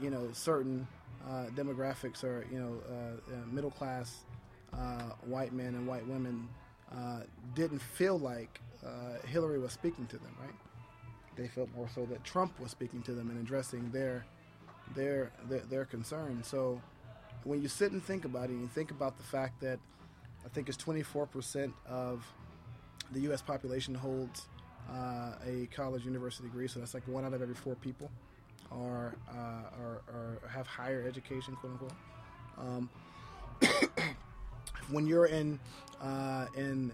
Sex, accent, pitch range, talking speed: male, American, 120-135 Hz, 150 wpm